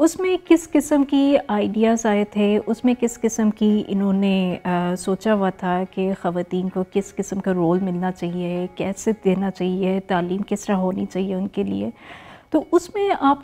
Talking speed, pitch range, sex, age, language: 190 wpm, 195-245 Hz, female, 30-49, Urdu